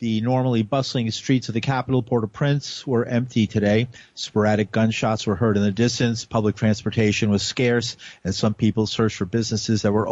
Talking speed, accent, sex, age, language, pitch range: 180 wpm, American, male, 50-69, English, 105-125 Hz